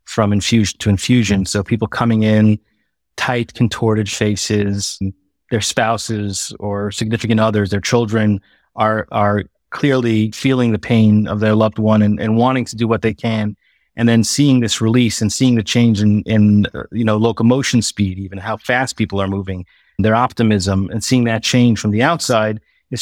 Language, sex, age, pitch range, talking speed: English, male, 30-49, 105-120 Hz, 175 wpm